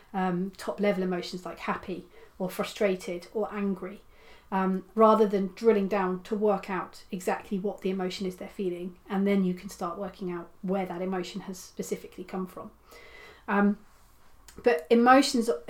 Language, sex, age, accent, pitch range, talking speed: English, female, 30-49, British, 185-210 Hz, 160 wpm